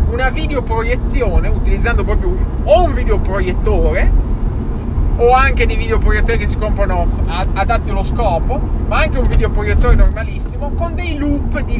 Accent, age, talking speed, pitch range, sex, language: native, 20-39, 130 wpm, 75-80 Hz, male, Italian